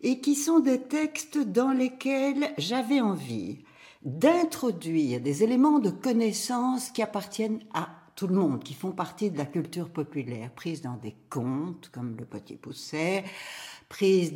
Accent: French